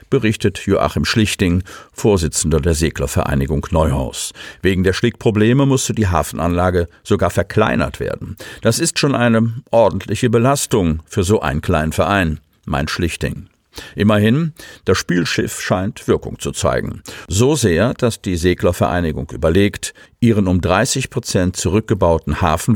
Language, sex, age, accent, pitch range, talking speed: German, male, 50-69, German, 85-115 Hz, 125 wpm